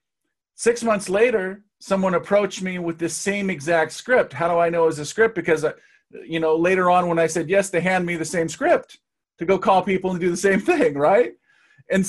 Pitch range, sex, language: 150-190 Hz, male, English